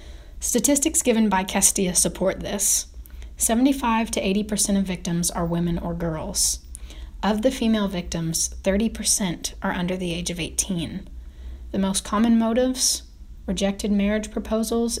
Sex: female